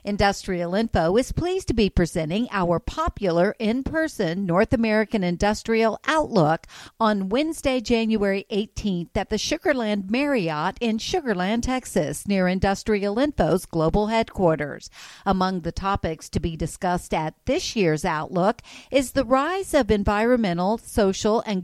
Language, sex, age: English, female, 50-69